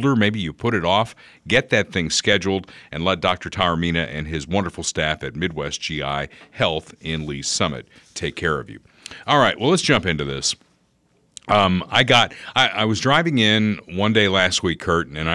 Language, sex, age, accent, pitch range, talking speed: English, male, 50-69, American, 80-100 Hz, 190 wpm